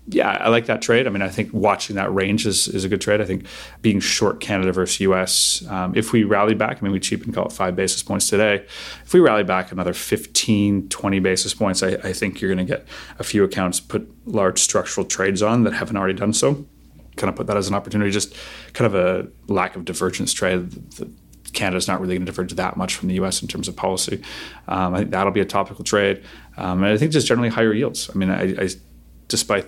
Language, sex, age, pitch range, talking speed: English, male, 30-49, 90-100 Hz, 245 wpm